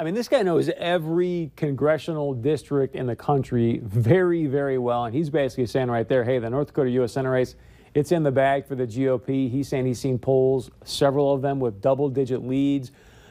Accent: American